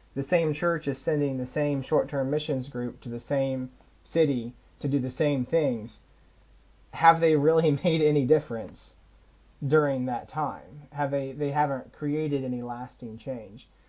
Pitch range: 130-155 Hz